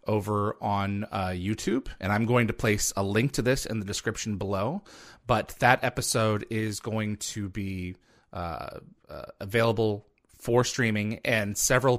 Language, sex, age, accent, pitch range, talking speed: English, male, 30-49, American, 95-115 Hz, 155 wpm